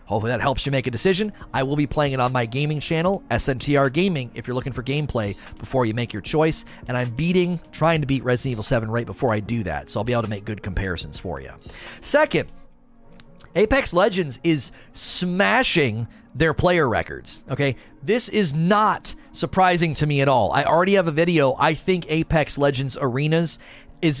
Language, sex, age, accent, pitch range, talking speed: English, male, 30-49, American, 130-175 Hz, 200 wpm